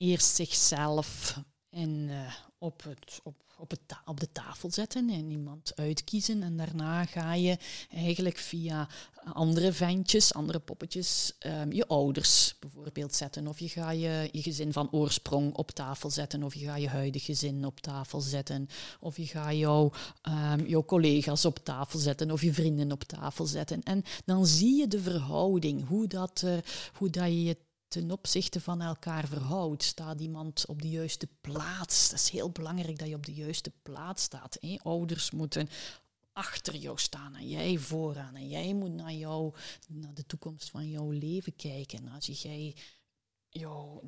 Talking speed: 170 wpm